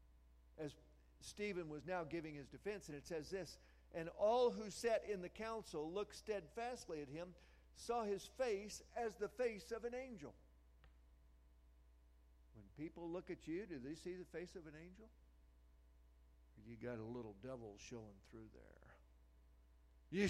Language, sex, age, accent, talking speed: English, male, 50-69, American, 155 wpm